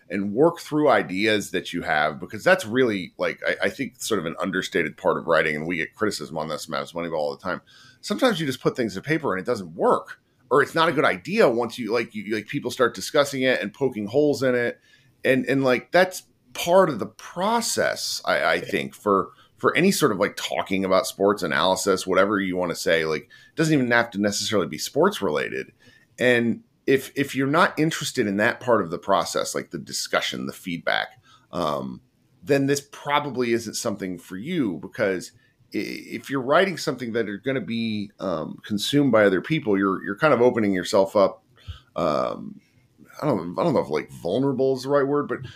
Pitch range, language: 100-145 Hz, English